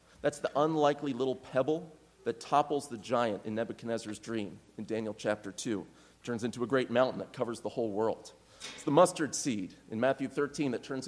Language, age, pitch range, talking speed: English, 30-49, 115-160 Hz, 195 wpm